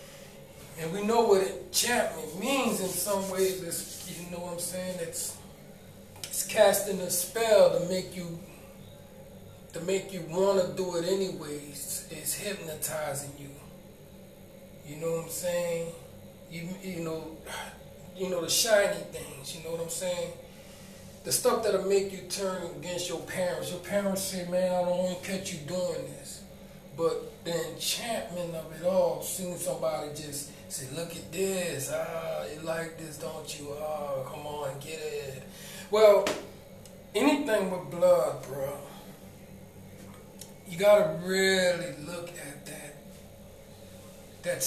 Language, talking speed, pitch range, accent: English, 145 wpm, 165-190 Hz, American